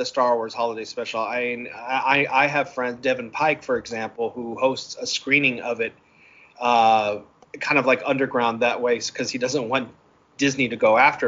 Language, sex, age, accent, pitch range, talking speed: English, male, 30-49, American, 120-145 Hz, 185 wpm